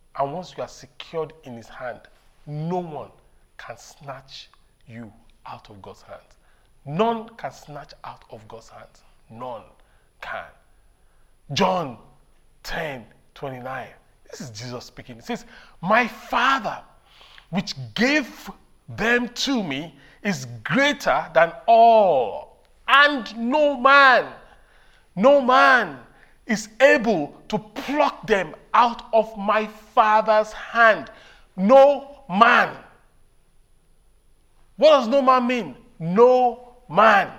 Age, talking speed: 40-59, 110 wpm